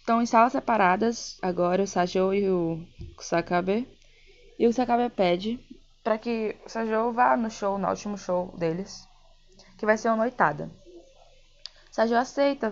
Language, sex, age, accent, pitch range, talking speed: Portuguese, female, 10-29, Brazilian, 185-230 Hz, 150 wpm